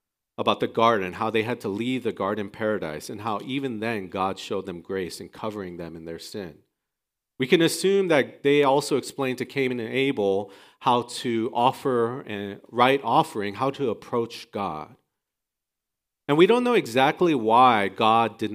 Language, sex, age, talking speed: English, male, 40-59, 175 wpm